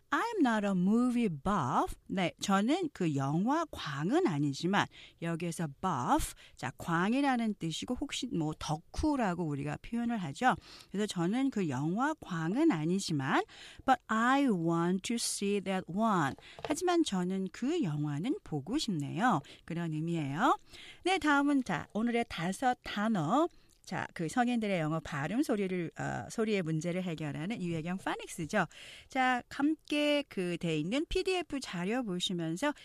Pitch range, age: 170-260 Hz, 40-59